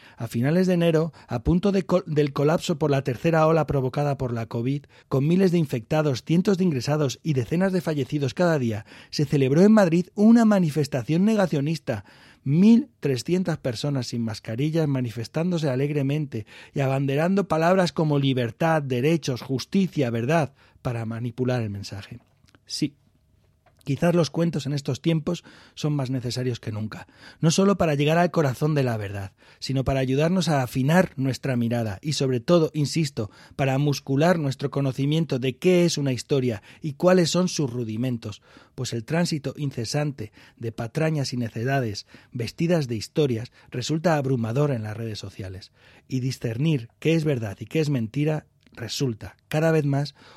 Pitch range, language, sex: 120-160 Hz, Spanish, male